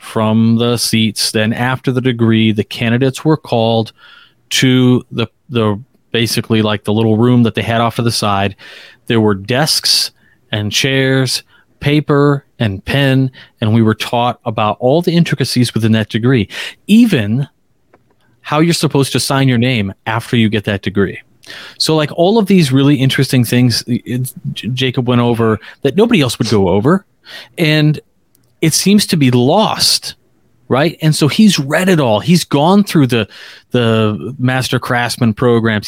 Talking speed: 160 wpm